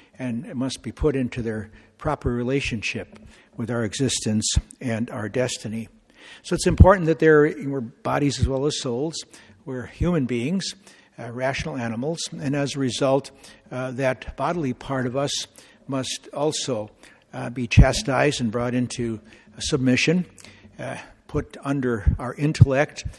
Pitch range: 115-140 Hz